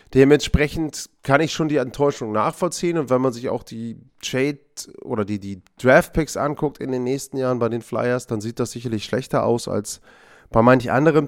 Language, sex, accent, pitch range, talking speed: German, male, German, 120-145 Hz, 195 wpm